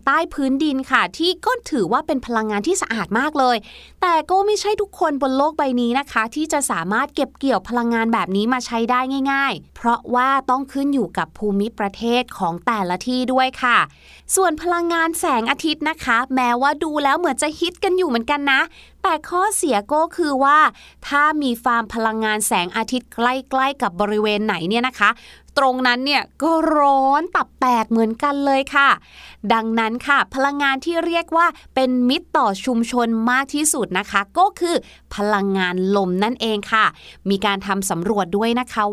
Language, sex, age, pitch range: Thai, female, 20-39, 220-290 Hz